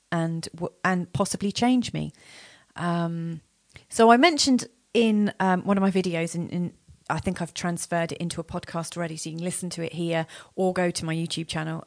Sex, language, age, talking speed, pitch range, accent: female, English, 30-49, 195 wpm, 160-190 Hz, British